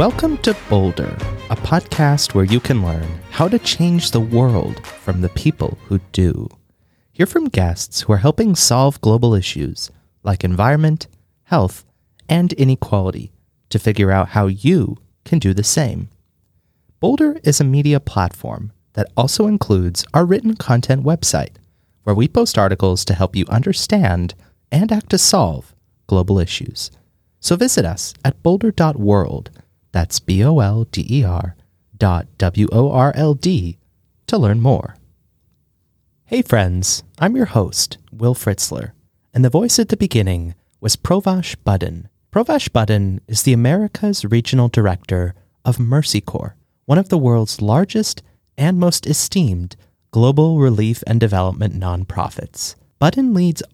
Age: 30-49